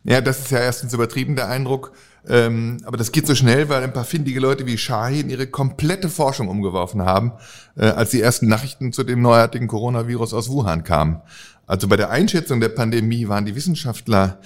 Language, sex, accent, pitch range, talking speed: German, male, German, 115-140 Hz, 185 wpm